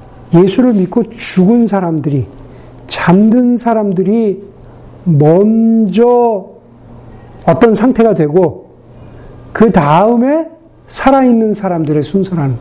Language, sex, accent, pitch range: Korean, male, native, 155-235 Hz